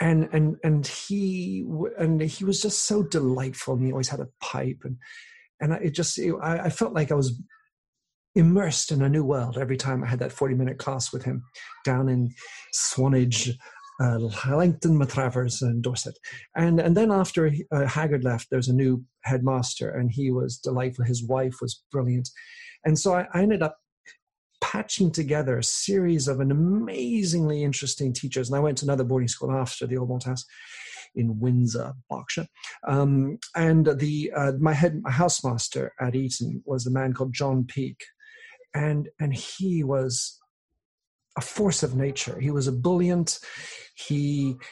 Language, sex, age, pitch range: English, male, 40-59, 130-170 Hz